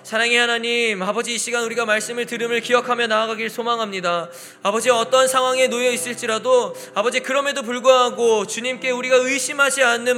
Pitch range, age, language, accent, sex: 250-300 Hz, 20-39, Korean, native, male